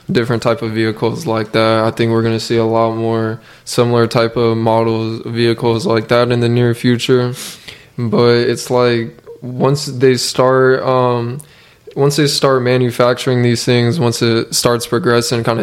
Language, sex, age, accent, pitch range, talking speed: English, male, 20-39, American, 115-125 Hz, 170 wpm